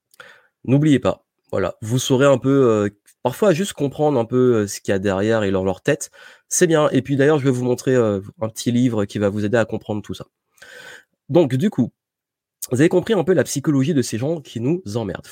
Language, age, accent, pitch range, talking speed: French, 20-39, French, 110-155 Hz, 230 wpm